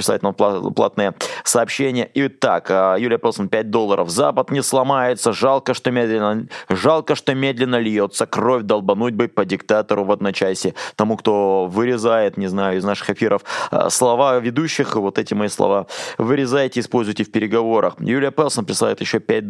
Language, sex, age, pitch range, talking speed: Russian, male, 20-39, 105-130 Hz, 150 wpm